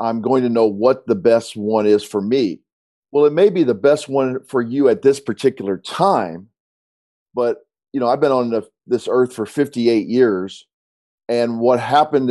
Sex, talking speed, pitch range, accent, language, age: male, 190 wpm, 105-125 Hz, American, English, 40-59